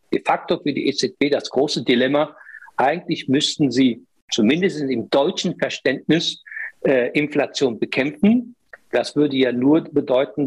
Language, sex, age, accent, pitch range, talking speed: German, male, 60-79, German, 135-190 Hz, 130 wpm